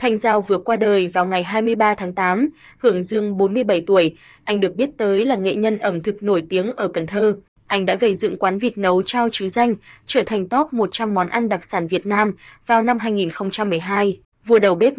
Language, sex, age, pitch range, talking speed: Vietnamese, female, 20-39, 195-225 Hz, 215 wpm